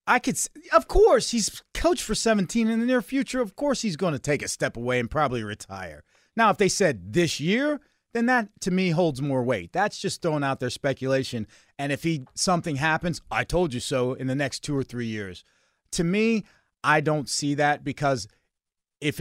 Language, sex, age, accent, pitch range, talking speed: English, male, 30-49, American, 130-175 Hz, 210 wpm